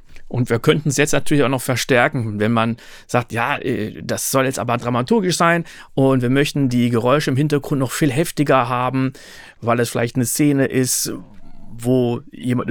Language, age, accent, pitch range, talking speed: German, 40-59, German, 120-145 Hz, 180 wpm